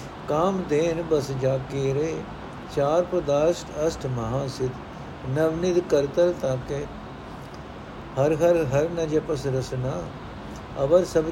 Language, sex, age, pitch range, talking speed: Punjabi, male, 60-79, 130-160 Hz, 105 wpm